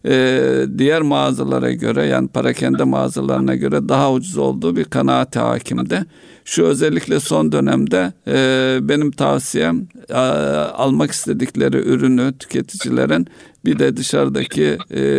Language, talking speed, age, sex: Turkish, 120 wpm, 50-69, male